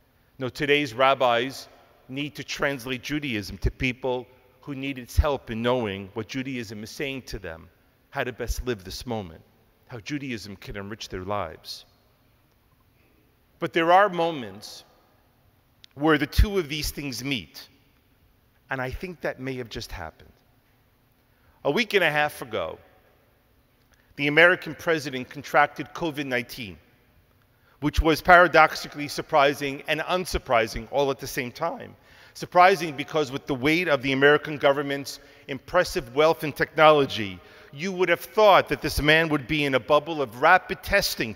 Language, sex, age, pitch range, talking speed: English, male, 40-59, 120-150 Hz, 150 wpm